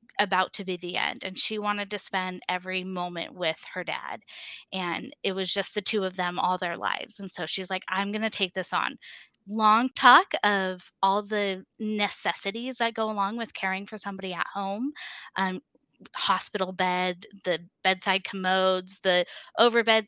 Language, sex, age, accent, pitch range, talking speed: English, female, 10-29, American, 190-225 Hz, 180 wpm